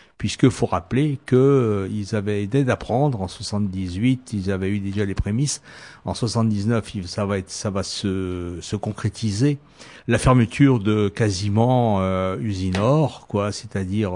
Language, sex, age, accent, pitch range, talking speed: French, male, 60-79, French, 105-125 Hz, 155 wpm